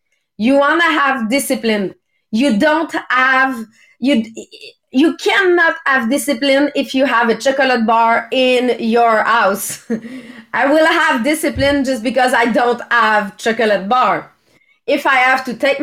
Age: 30-49